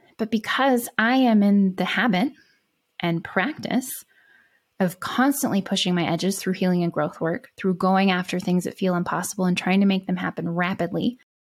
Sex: female